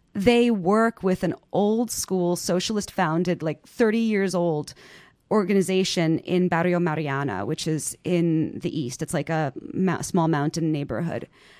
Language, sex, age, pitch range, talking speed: English, female, 30-49, 165-200 Hz, 140 wpm